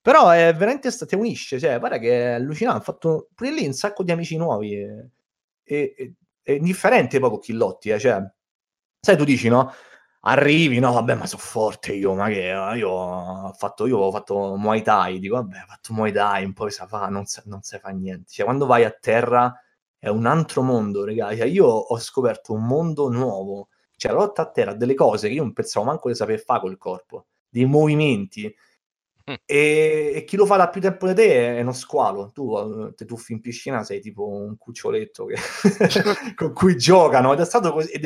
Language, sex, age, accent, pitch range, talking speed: Italian, male, 30-49, native, 105-170 Hz, 200 wpm